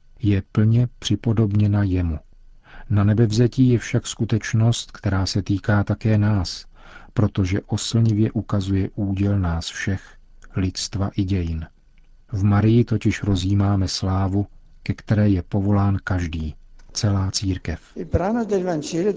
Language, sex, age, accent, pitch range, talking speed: Czech, male, 40-59, native, 95-110 Hz, 110 wpm